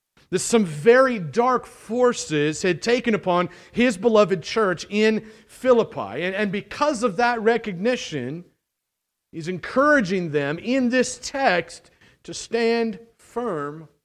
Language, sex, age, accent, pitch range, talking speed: English, male, 50-69, American, 160-215 Hz, 120 wpm